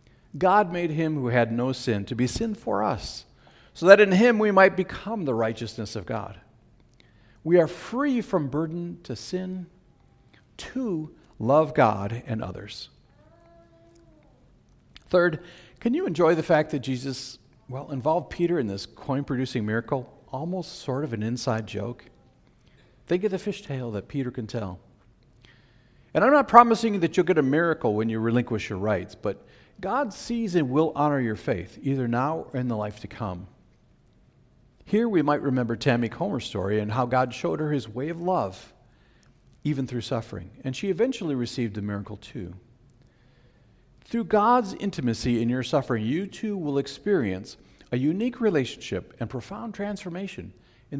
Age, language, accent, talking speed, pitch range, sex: 50-69, English, American, 165 wpm, 115-175 Hz, male